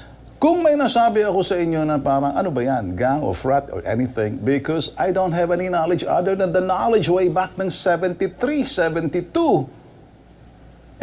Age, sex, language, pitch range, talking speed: 50-69, male, Filipino, 135-210 Hz, 165 wpm